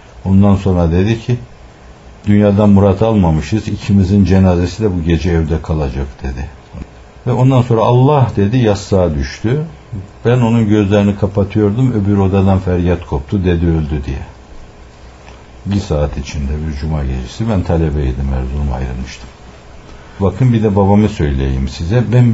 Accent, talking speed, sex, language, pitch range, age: native, 135 wpm, male, Turkish, 75-105 Hz, 60-79